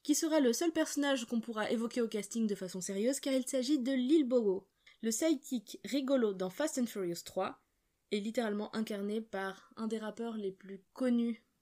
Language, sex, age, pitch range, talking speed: French, female, 20-39, 205-260 Hz, 190 wpm